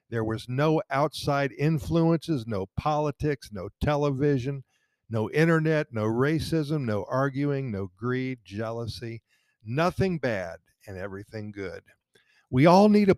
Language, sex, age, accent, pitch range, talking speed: English, male, 50-69, American, 115-155 Hz, 125 wpm